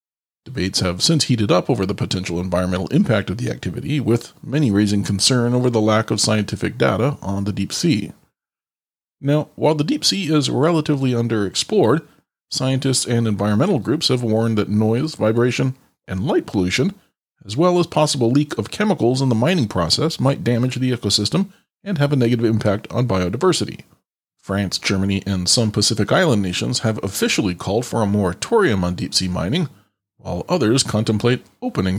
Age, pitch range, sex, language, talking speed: 40-59, 100-140 Hz, male, English, 170 wpm